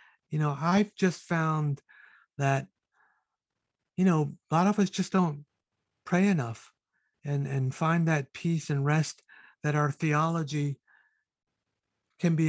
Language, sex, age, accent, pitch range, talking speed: English, male, 50-69, American, 140-165 Hz, 135 wpm